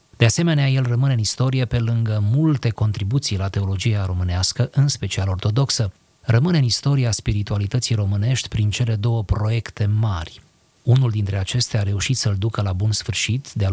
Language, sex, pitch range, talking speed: Romanian, male, 100-125 Hz, 160 wpm